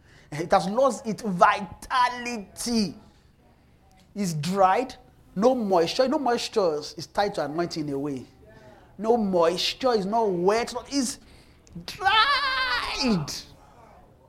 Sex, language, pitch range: male, English, 155-240 Hz